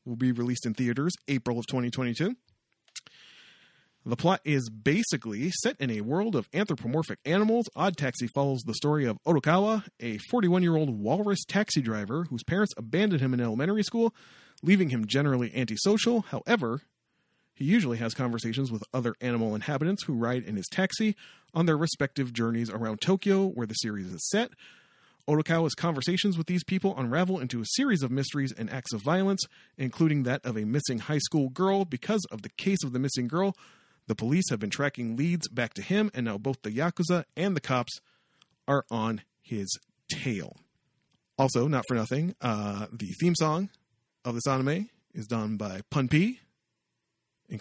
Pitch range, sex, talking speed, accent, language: 120-180 Hz, male, 170 wpm, American, English